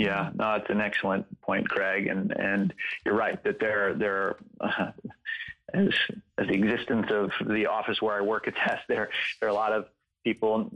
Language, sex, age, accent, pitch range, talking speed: English, male, 40-59, American, 100-110 Hz, 185 wpm